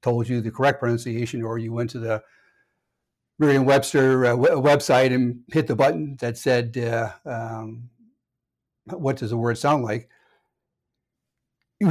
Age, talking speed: 60-79, 140 wpm